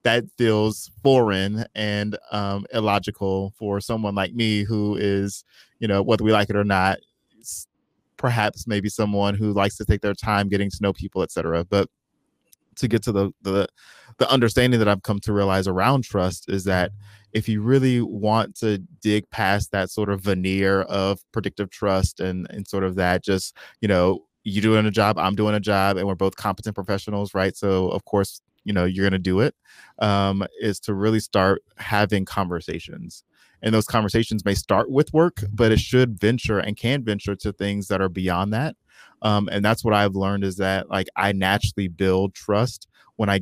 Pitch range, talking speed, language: 95-105 Hz, 190 wpm, English